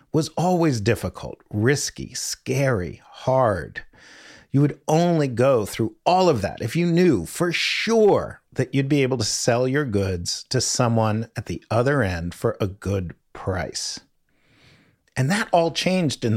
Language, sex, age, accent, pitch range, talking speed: English, male, 40-59, American, 110-155 Hz, 155 wpm